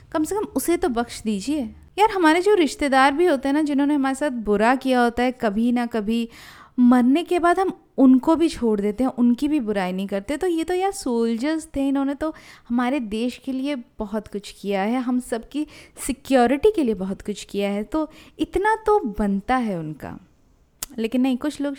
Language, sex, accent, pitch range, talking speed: Hindi, female, native, 225-290 Hz, 205 wpm